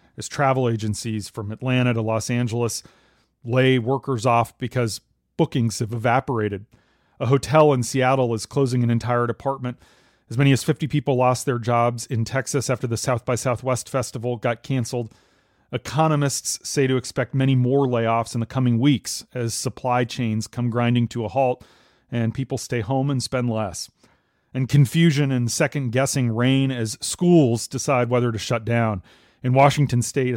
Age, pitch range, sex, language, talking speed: 40-59, 115-135 Hz, male, English, 165 wpm